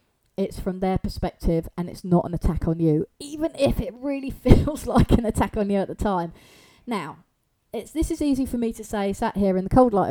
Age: 30-49